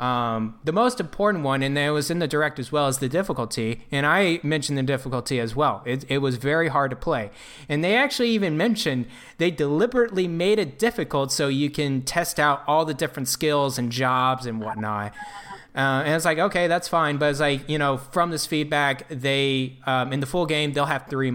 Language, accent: English, American